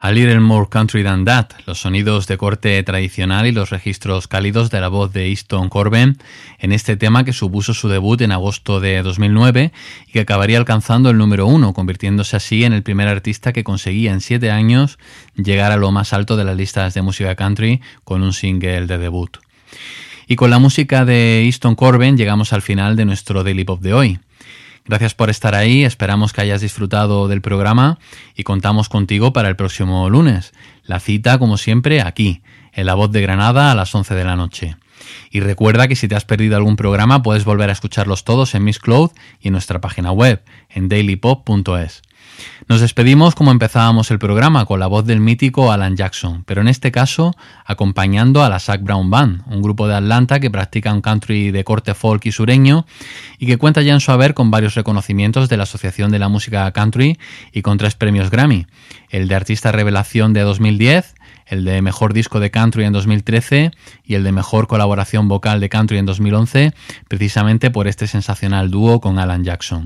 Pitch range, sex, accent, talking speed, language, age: 100-120 Hz, male, Spanish, 195 wpm, Spanish, 20-39